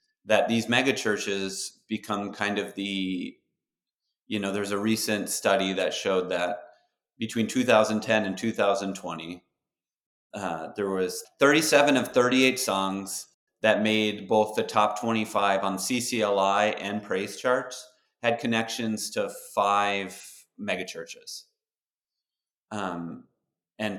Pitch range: 100-125 Hz